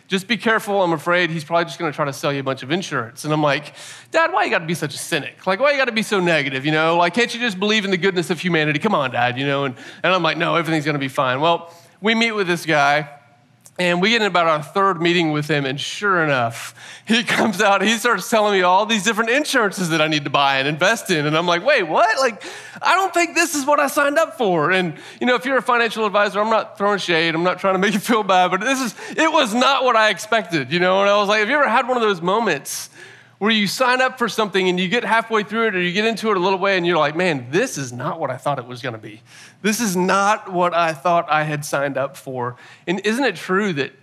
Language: English